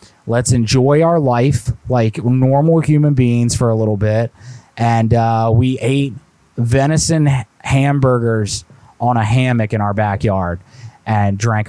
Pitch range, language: 110-140 Hz, English